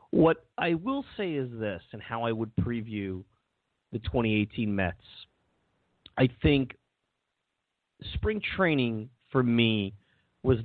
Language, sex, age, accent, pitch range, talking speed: English, male, 30-49, American, 100-125 Hz, 120 wpm